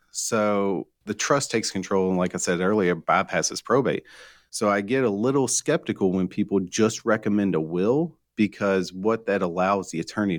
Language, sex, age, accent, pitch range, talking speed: English, male, 40-59, American, 90-110 Hz, 175 wpm